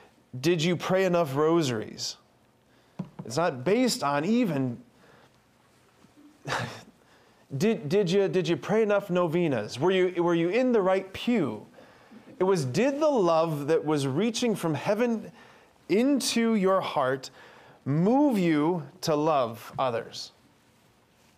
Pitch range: 125-175 Hz